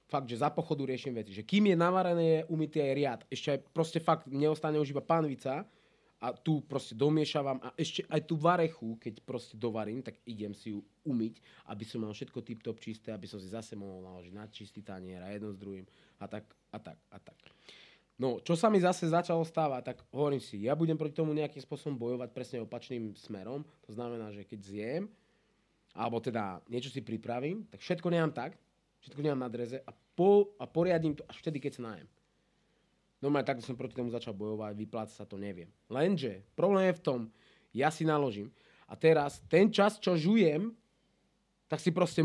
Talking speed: 200 wpm